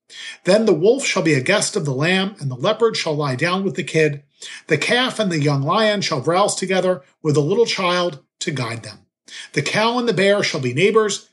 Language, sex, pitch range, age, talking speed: English, male, 145-205 Hz, 40-59, 230 wpm